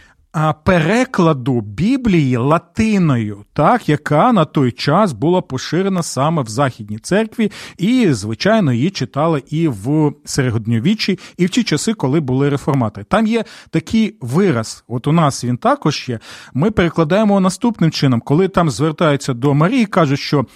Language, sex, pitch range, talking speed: Ukrainian, male, 145-205 Hz, 145 wpm